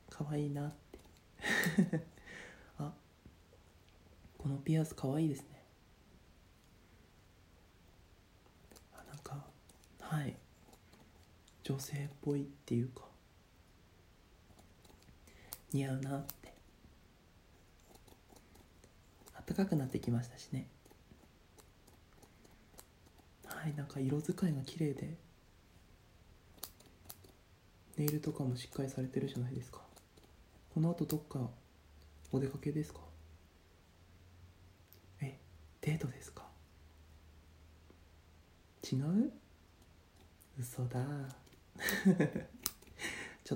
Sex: male